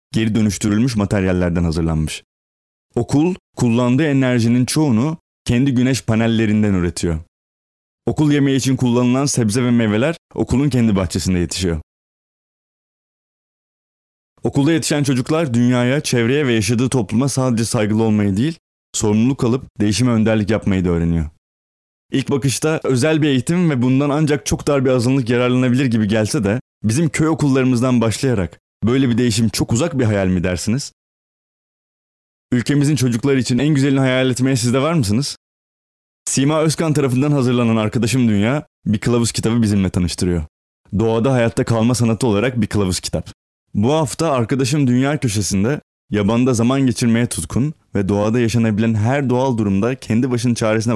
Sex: male